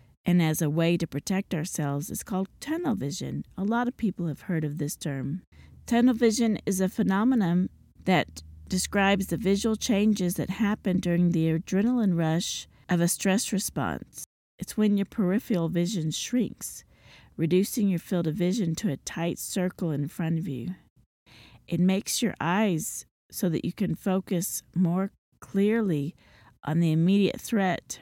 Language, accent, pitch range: English, American, 165-200 Hz